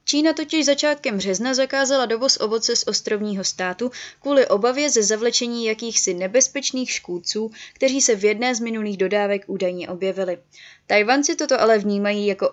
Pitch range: 195-250 Hz